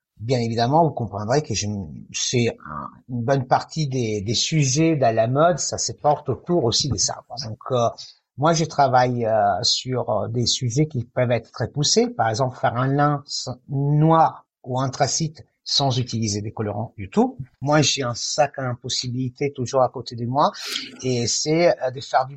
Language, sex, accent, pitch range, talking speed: French, male, French, 120-150 Hz, 180 wpm